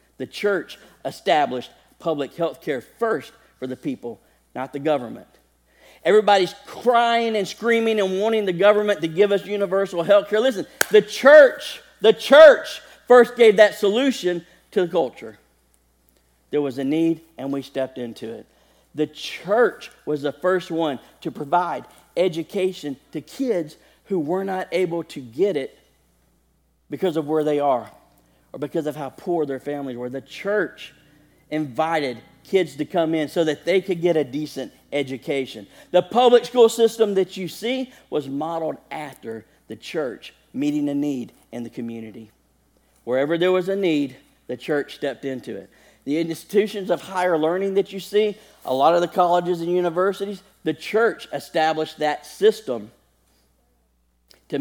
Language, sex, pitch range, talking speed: English, male, 140-200 Hz, 155 wpm